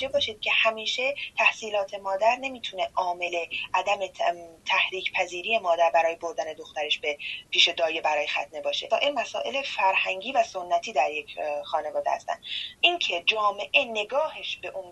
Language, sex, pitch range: Persian, female, 170-225 Hz